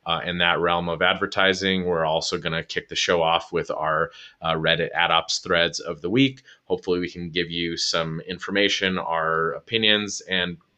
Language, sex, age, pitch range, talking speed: English, male, 30-49, 85-105 Hz, 185 wpm